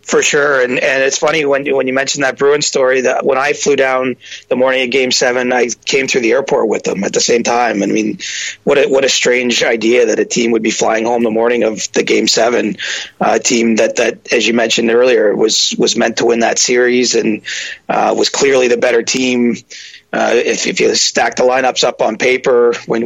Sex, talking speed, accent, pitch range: male, 230 wpm, American, 120-180 Hz